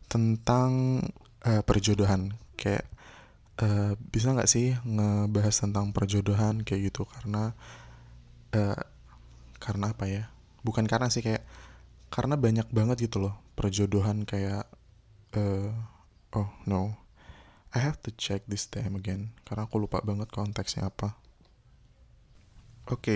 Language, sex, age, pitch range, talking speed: Indonesian, male, 20-39, 100-115 Hz, 120 wpm